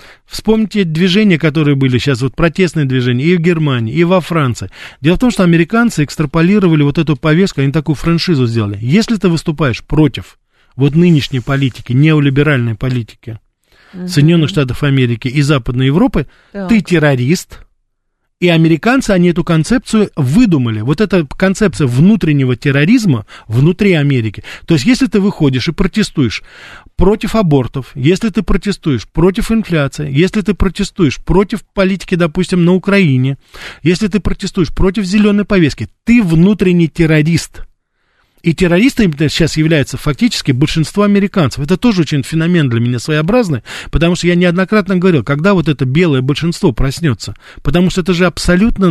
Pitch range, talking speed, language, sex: 140-195 Hz, 145 wpm, Russian, male